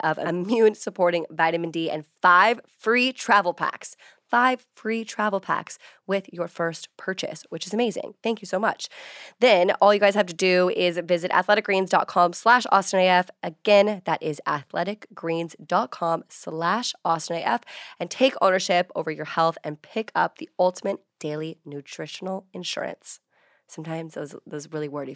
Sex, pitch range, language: female, 165-200 Hz, English